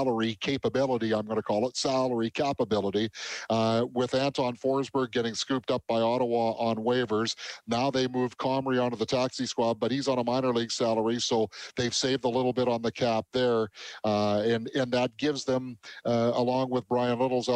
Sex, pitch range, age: male, 110-130 Hz, 50-69